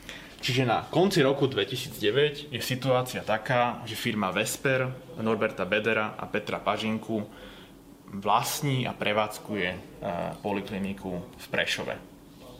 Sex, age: male, 20-39